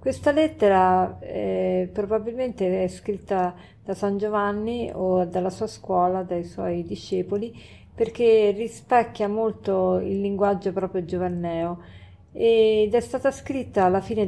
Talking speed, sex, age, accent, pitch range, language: 120 wpm, female, 40-59, native, 185-220 Hz, Italian